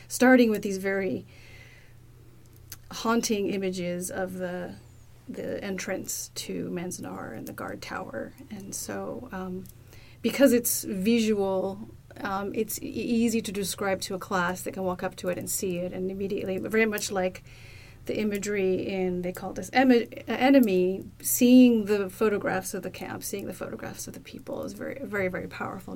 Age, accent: 30-49, American